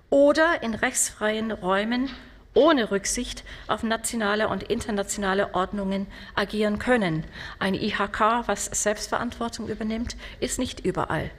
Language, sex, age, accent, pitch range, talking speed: German, female, 40-59, German, 200-260 Hz, 110 wpm